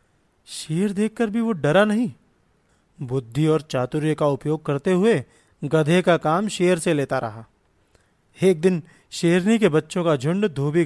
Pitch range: 130-180 Hz